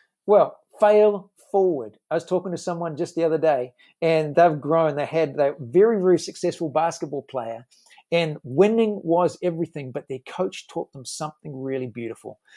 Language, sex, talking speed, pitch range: English, male, 165 wpm, 145-185 Hz